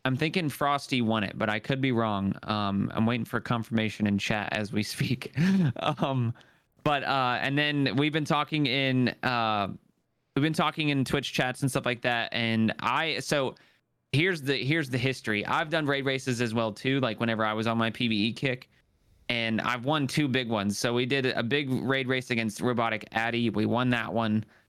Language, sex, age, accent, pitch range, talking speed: English, male, 20-39, American, 110-130 Hz, 200 wpm